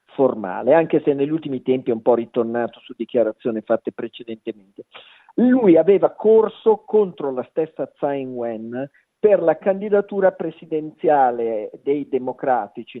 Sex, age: male, 40-59